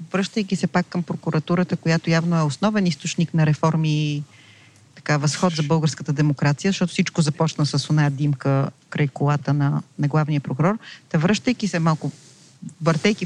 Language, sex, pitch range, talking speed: Bulgarian, female, 150-185 Hz, 155 wpm